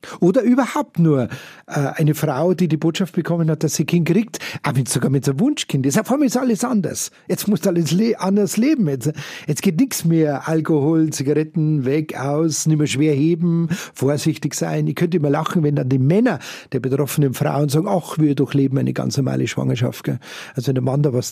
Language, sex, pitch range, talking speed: German, male, 145-180 Hz, 200 wpm